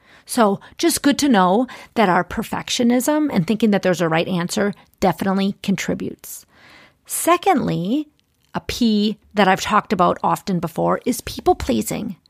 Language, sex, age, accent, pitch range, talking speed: English, female, 40-59, American, 195-265 Hz, 135 wpm